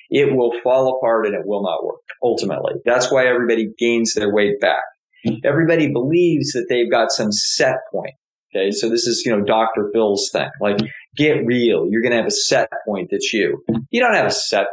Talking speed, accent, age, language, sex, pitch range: 210 wpm, American, 40-59, English, male, 120-170 Hz